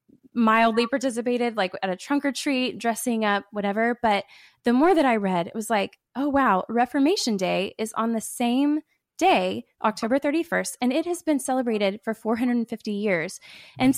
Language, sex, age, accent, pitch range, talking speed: English, female, 20-39, American, 205-255 Hz, 170 wpm